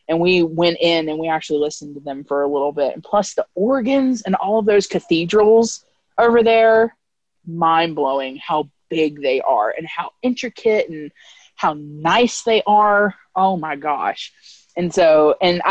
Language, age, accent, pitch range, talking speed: English, 20-39, American, 155-210 Hz, 170 wpm